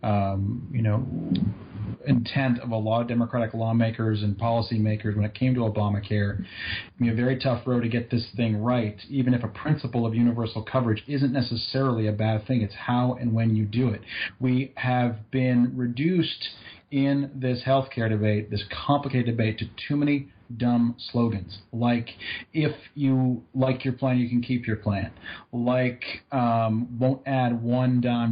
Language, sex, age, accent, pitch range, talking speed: English, male, 30-49, American, 110-130 Hz, 170 wpm